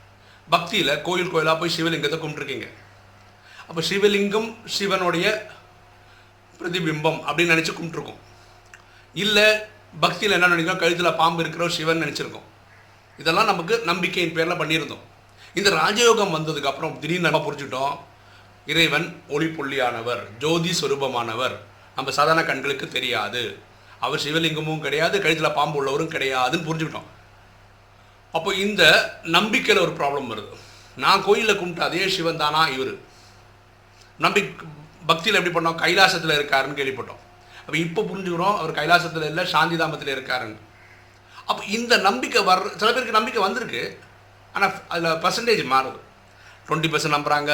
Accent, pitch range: native, 115-175 Hz